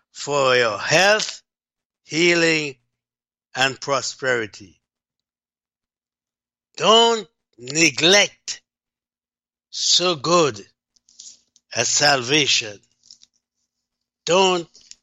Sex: male